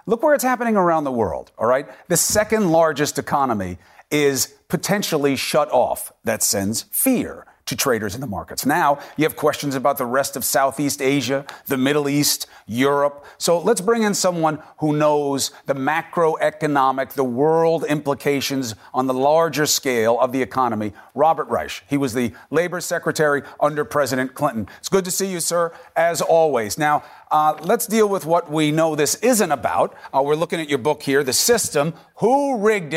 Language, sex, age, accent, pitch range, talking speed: English, male, 40-59, American, 140-170 Hz, 180 wpm